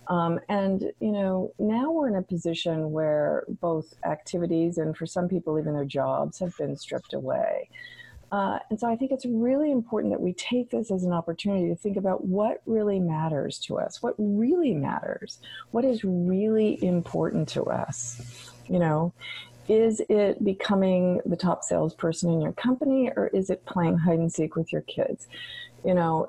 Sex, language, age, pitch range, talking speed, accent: female, English, 40-59, 150-195 Hz, 180 wpm, American